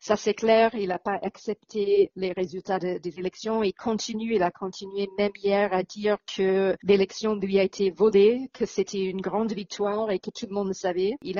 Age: 40-59